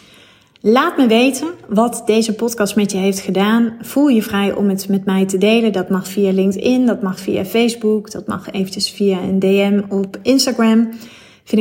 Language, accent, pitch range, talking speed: Dutch, Dutch, 190-215 Hz, 185 wpm